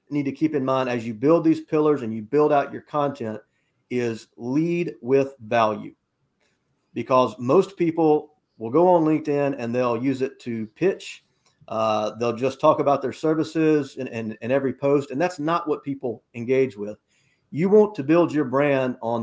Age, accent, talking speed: 40-59, American, 180 wpm